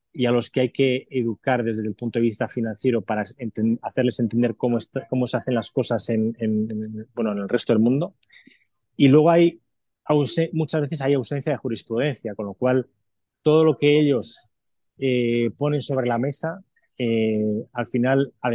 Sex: male